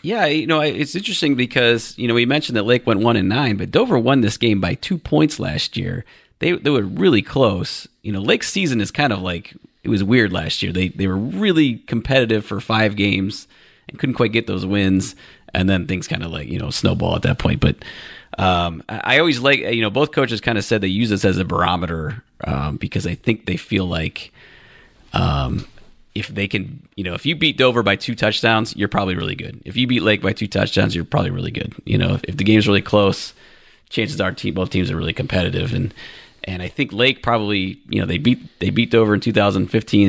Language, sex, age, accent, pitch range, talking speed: English, male, 30-49, American, 95-120 Hz, 235 wpm